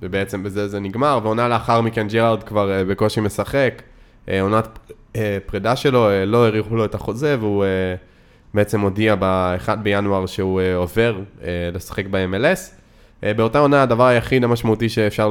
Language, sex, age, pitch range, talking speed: Hebrew, male, 20-39, 95-110 Hz, 165 wpm